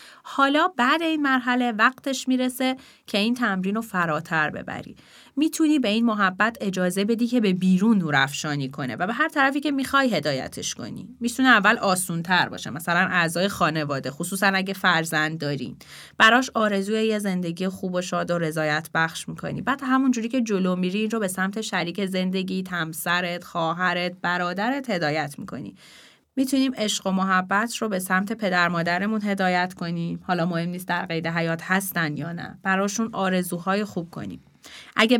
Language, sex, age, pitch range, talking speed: Persian, female, 30-49, 175-230 Hz, 155 wpm